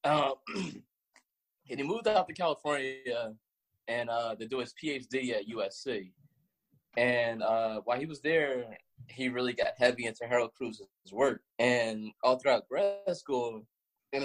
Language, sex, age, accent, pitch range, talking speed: English, male, 20-39, American, 110-145 Hz, 145 wpm